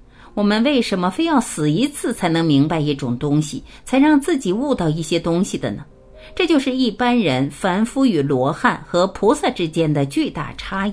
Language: Chinese